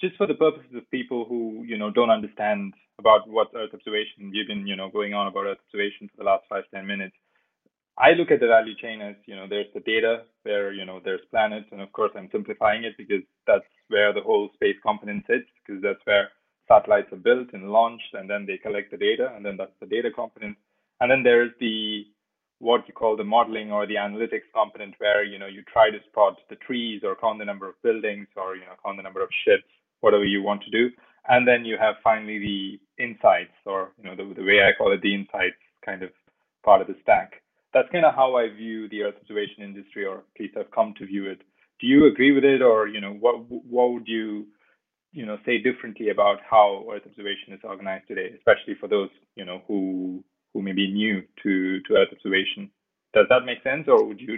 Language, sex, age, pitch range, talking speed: English, male, 20-39, 100-120 Hz, 230 wpm